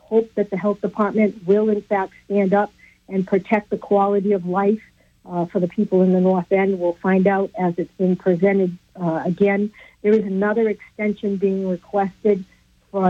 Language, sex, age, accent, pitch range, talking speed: English, female, 60-79, American, 180-205 Hz, 185 wpm